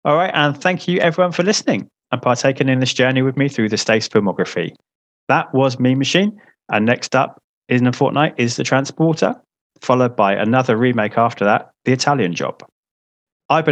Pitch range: 105-150 Hz